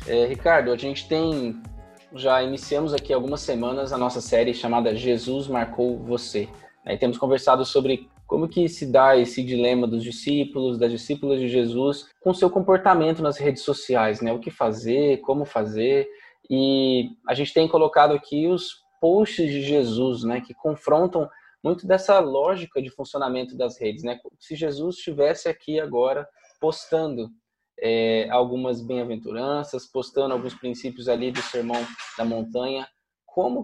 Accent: Brazilian